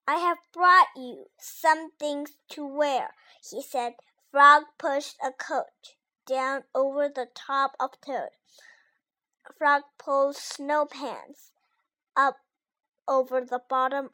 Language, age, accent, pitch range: Chinese, 20-39, American, 265-320 Hz